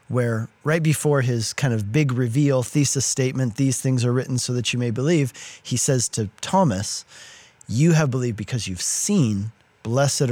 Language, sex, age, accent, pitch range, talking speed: English, male, 40-59, American, 110-140 Hz, 175 wpm